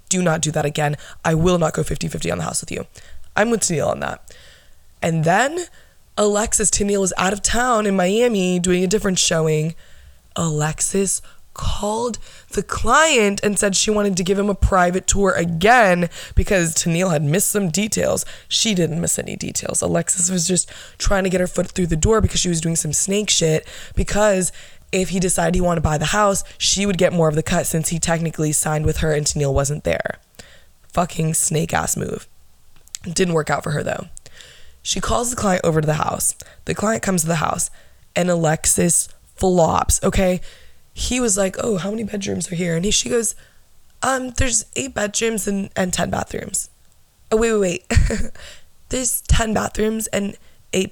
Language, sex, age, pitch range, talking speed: English, female, 20-39, 160-205 Hz, 195 wpm